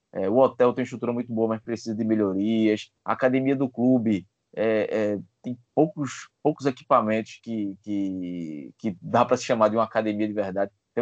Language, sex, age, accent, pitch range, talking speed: Portuguese, male, 20-39, Brazilian, 105-130 Hz, 185 wpm